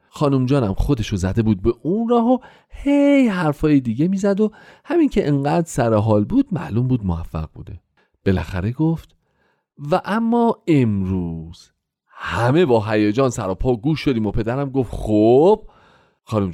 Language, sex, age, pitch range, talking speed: Persian, male, 40-59, 110-185 Hz, 150 wpm